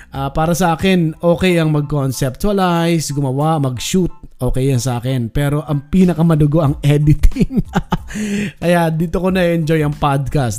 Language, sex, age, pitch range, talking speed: Filipino, male, 20-39, 125-160 Hz, 135 wpm